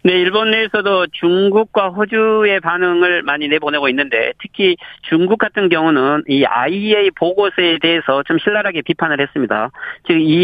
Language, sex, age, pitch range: Korean, male, 40-59, 150-200 Hz